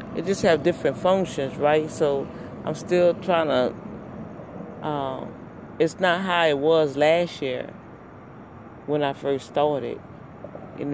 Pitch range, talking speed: 135-170 Hz, 130 wpm